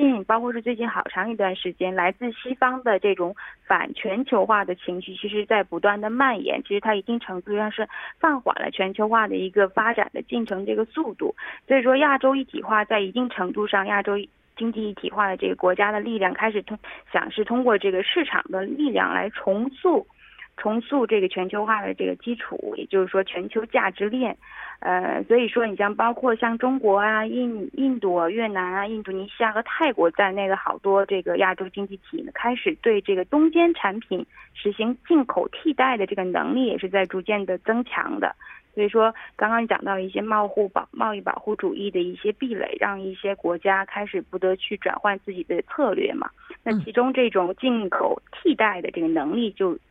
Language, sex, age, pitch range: Korean, female, 20-39, 195-250 Hz